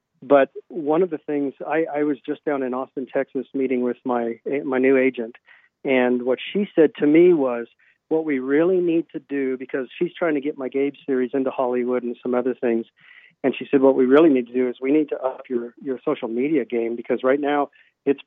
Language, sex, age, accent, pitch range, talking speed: English, male, 40-59, American, 125-150 Hz, 225 wpm